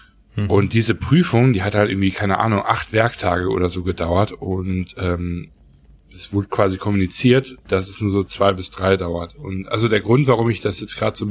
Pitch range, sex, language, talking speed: 95-115 Hz, male, German, 205 wpm